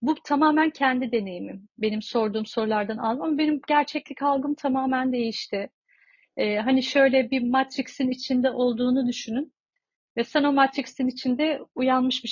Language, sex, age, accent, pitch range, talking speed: Turkish, female, 40-59, native, 225-270 Hz, 140 wpm